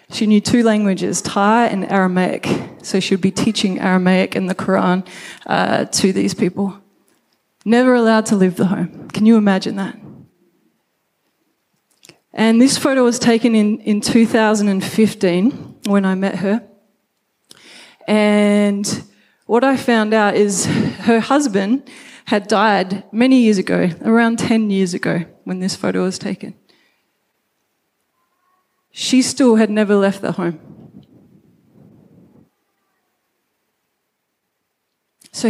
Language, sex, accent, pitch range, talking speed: English, female, Australian, 195-235 Hz, 120 wpm